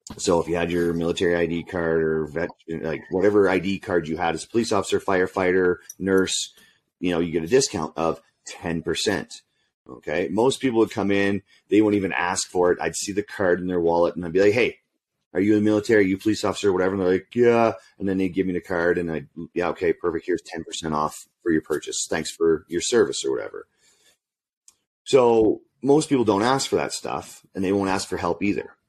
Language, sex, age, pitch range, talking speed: English, male, 30-49, 90-115 Hz, 235 wpm